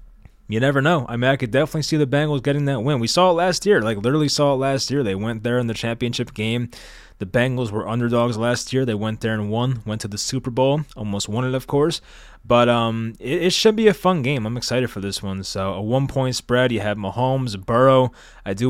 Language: English